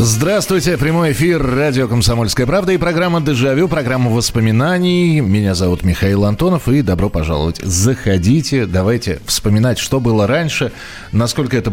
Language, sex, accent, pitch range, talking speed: Russian, male, native, 105-150 Hz, 135 wpm